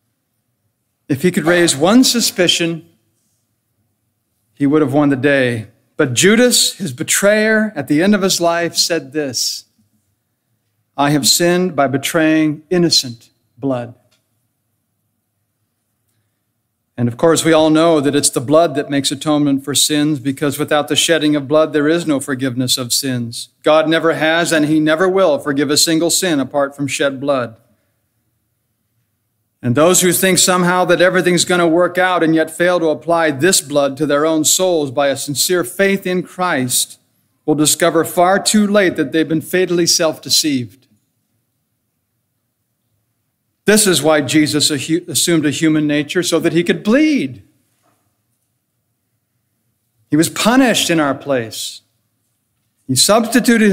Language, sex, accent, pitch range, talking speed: English, male, American, 120-170 Hz, 145 wpm